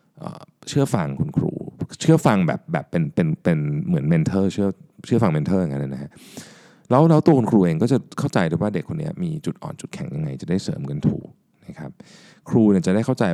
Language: Thai